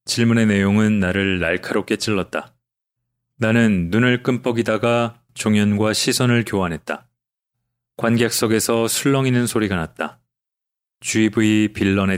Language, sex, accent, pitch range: Korean, male, native, 105-125 Hz